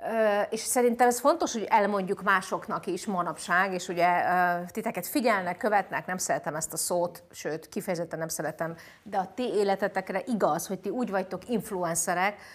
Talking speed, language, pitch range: 160 wpm, Hungarian, 175-230 Hz